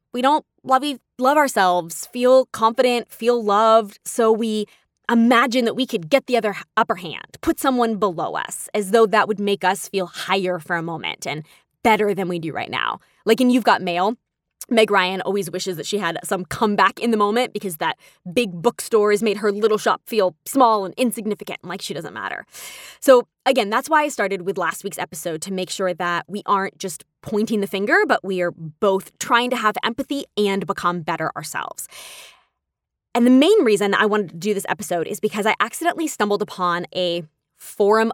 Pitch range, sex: 180-235 Hz, female